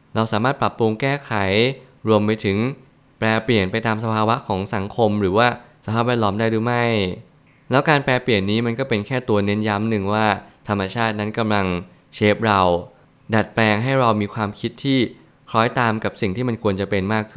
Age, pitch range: 20-39, 100-120 Hz